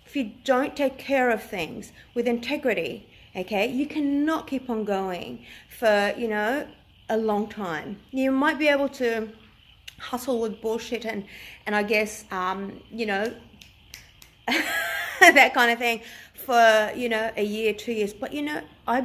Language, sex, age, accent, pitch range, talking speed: English, female, 30-49, Australian, 210-250 Hz, 160 wpm